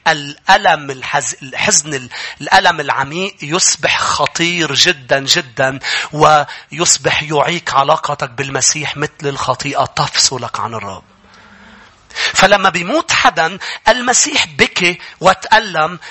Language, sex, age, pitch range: English, male, 40-59, 175-275 Hz